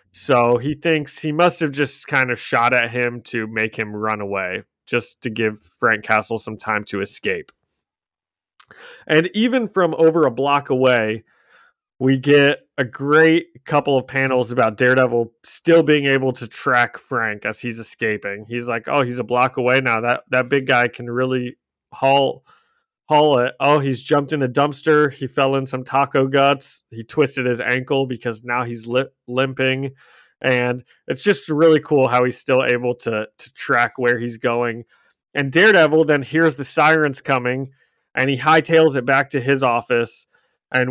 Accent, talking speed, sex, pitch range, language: American, 175 wpm, male, 120-145 Hz, English